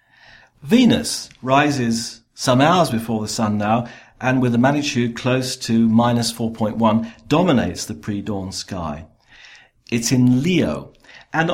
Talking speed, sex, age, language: 125 wpm, male, 50-69, English